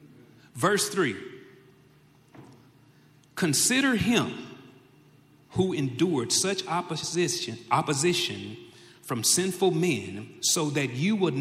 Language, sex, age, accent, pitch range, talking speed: English, male, 40-59, American, 120-165 Hz, 85 wpm